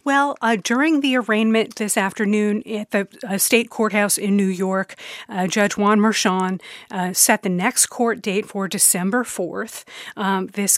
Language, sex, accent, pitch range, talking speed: English, female, American, 195-235 Hz, 165 wpm